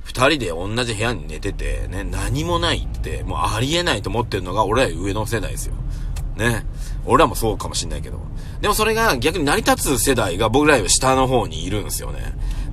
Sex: male